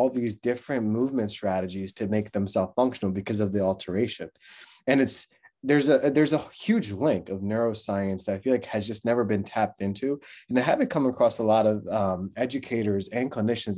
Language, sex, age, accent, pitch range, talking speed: English, male, 20-39, American, 100-120 Hz, 190 wpm